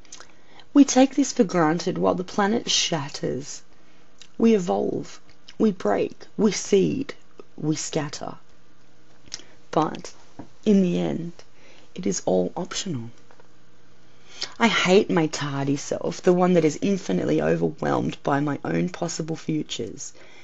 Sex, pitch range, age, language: female, 135-200 Hz, 30-49, English